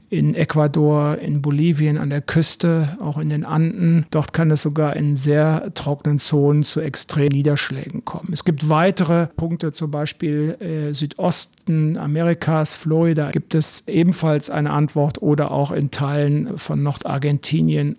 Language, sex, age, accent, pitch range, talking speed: German, male, 50-69, German, 145-165 Hz, 145 wpm